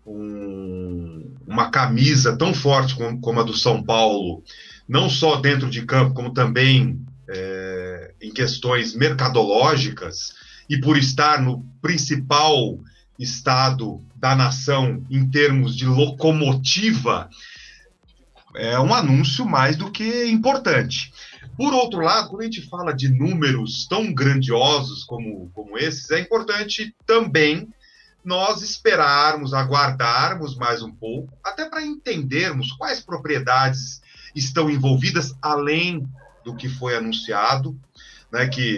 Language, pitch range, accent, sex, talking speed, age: Portuguese, 120-155 Hz, Brazilian, male, 120 wpm, 40-59